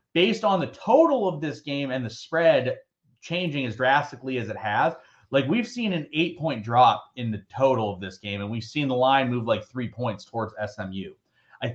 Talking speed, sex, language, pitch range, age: 210 wpm, male, English, 115-155 Hz, 30-49